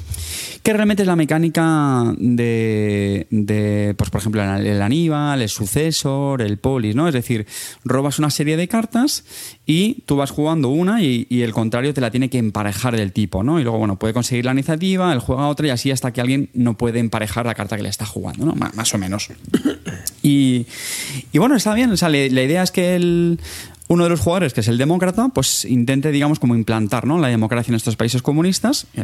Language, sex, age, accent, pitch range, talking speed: Spanish, male, 20-39, Spanish, 110-145 Hz, 210 wpm